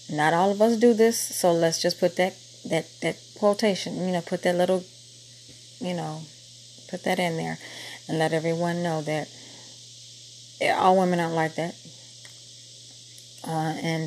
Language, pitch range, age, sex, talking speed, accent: English, 155-180 Hz, 30-49, female, 160 wpm, American